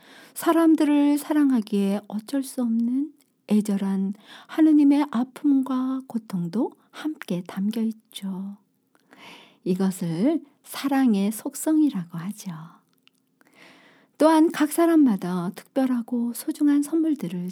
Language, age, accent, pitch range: Korean, 50-69, native, 200-290 Hz